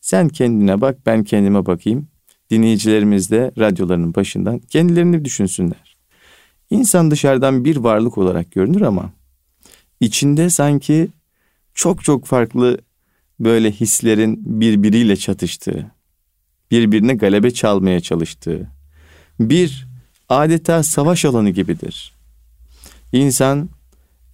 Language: Turkish